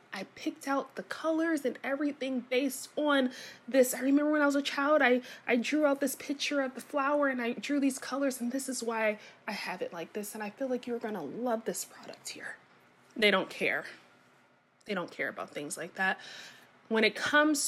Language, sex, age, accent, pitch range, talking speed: English, female, 20-39, American, 195-265 Hz, 215 wpm